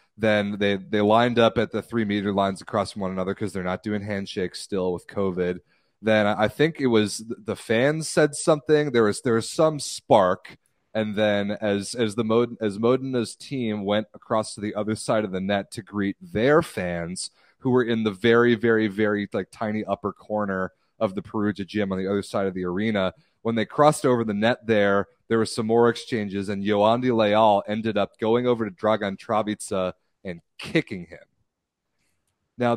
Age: 30-49